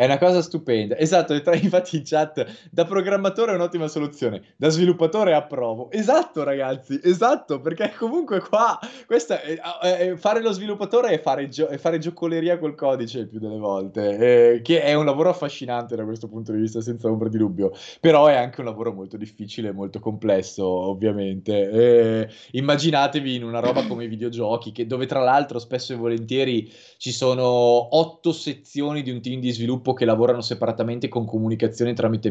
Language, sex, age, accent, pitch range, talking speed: Italian, male, 20-39, native, 115-160 Hz, 180 wpm